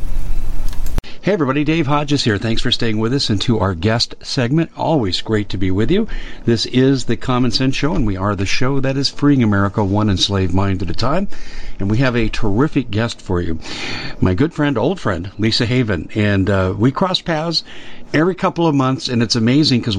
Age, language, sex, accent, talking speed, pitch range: 50-69, English, male, American, 205 wpm, 105-135 Hz